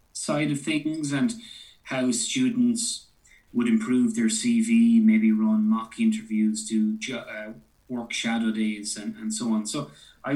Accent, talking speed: Irish, 150 wpm